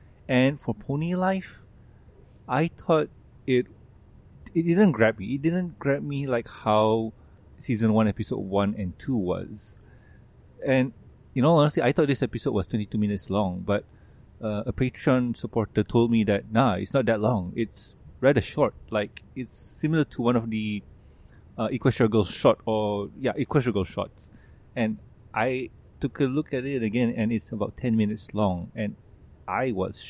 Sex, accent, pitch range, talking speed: male, Malaysian, 100-130 Hz, 165 wpm